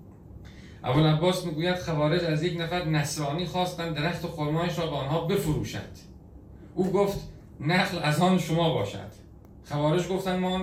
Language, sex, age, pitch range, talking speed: Persian, male, 40-59, 100-155 Hz, 145 wpm